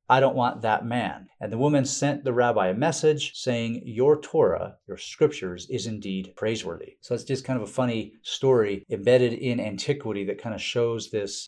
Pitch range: 110-145 Hz